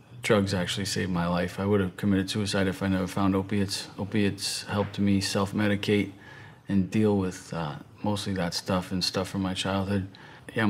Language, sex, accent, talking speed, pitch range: English, male, American, 180 wpm, 95-110 Hz